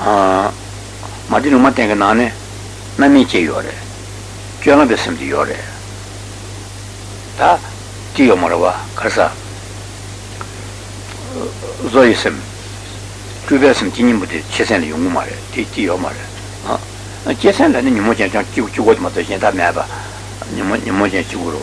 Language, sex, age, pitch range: Italian, male, 60-79, 100-105 Hz